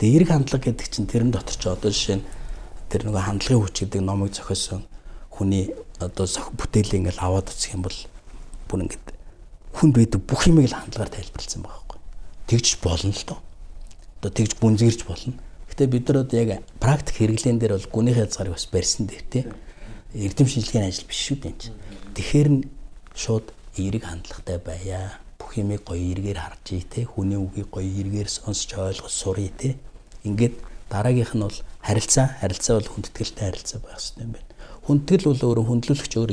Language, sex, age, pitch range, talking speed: English, male, 60-79, 95-125 Hz, 160 wpm